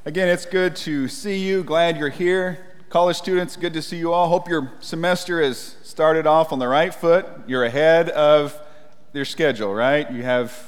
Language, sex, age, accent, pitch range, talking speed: English, male, 40-59, American, 135-175 Hz, 190 wpm